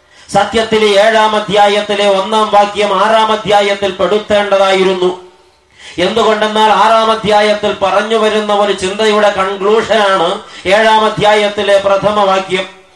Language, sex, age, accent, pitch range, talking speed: English, male, 30-49, Indian, 195-220 Hz, 120 wpm